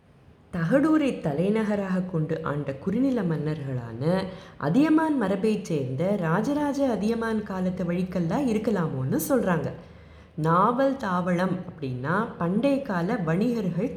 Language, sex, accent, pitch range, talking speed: Tamil, female, native, 170-260 Hz, 90 wpm